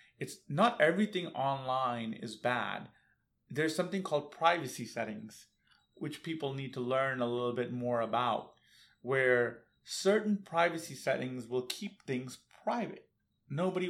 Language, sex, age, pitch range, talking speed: English, male, 30-49, 120-150 Hz, 130 wpm